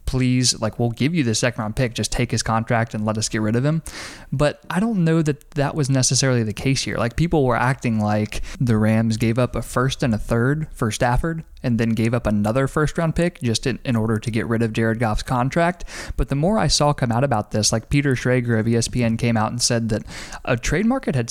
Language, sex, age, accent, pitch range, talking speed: English, male, 20-39, American, 110-135 Hz, 250 wpm